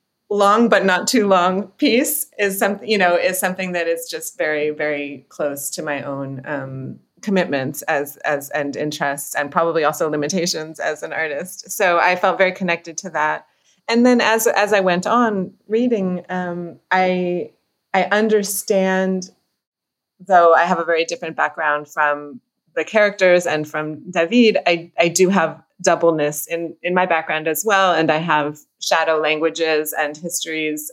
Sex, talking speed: female, 165 wpm